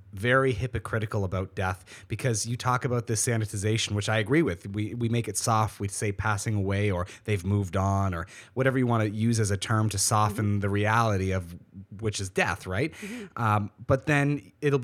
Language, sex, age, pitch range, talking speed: English, male, 30-49, 100-120 Hz, 200 wpm